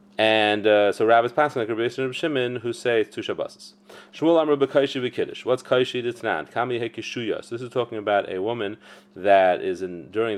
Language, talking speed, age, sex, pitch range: English, 160 wpm, 30-49, male, 95-135 Hz